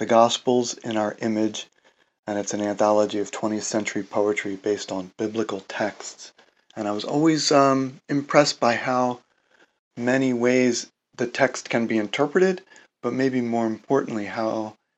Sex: male